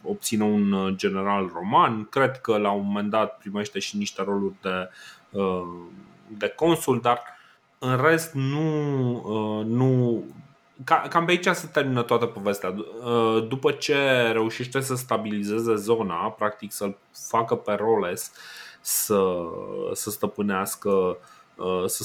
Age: 20-39